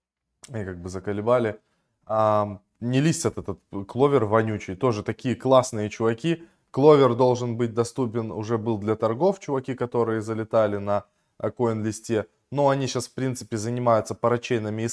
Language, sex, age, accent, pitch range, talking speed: Russian, male, 20-39, native, 105-130 Hz, 135 wpm